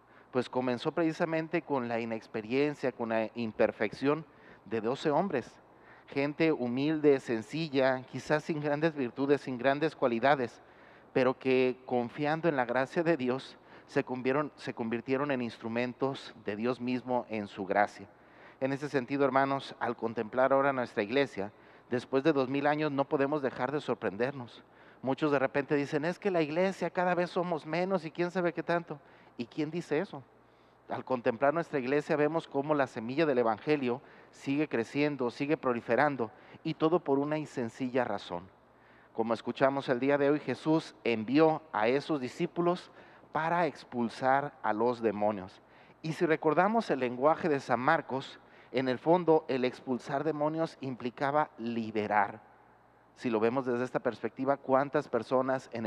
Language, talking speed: Spanish, 155 wpm